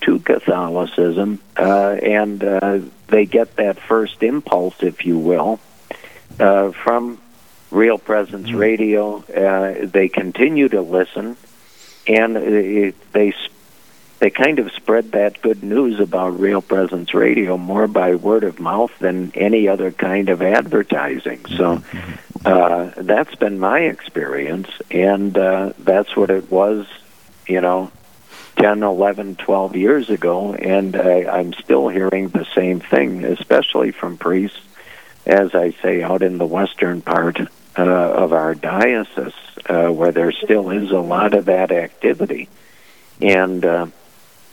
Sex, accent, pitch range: male, American, 90-100 Hz